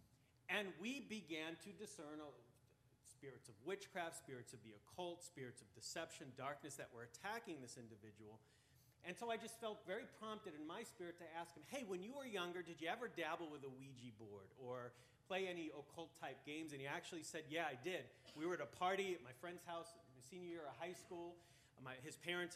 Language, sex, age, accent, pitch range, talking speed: English, male, 40-59, American, 130-175 Hz, 205 wpm